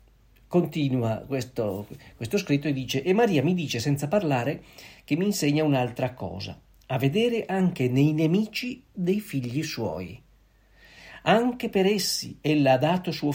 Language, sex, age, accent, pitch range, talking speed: Italian, male, 50-69, native, 125-180 Hz, 145 wpm